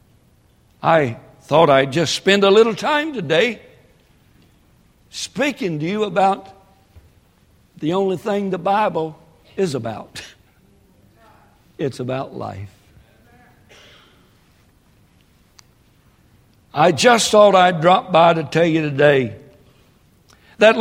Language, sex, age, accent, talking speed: English, male, 60-79, American, 100 wpm